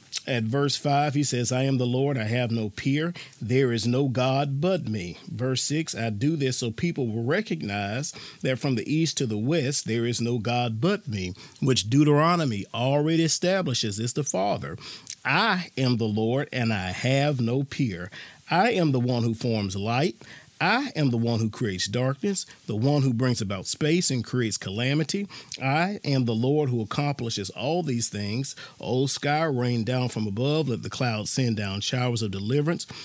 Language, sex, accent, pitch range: English, male, American, 115-145 Hz